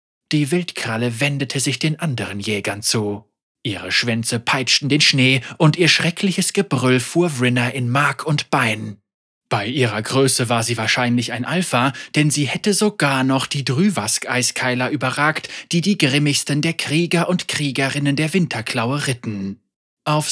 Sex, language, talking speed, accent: male, German, 150 wpm, German